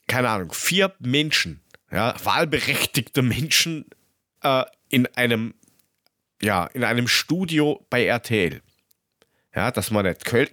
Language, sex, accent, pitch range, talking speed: German, male, German, 110-155 Hz, 115 wpm